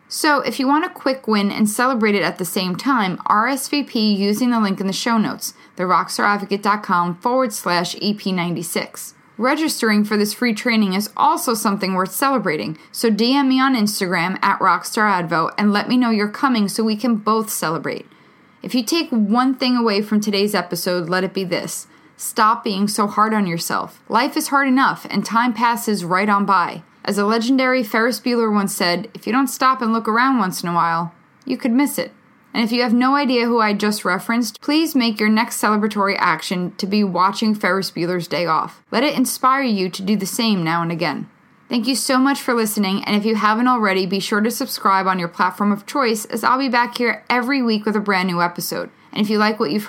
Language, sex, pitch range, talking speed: English, female, 195-245 Hz, 215 wpm